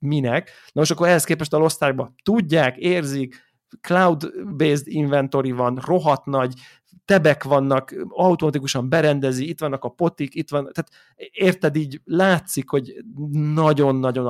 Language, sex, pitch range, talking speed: Hungarian, male, 130-160 Hz, 130 wpm